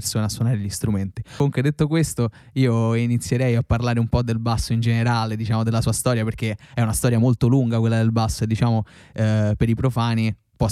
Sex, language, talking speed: male, Italian, 205 wpm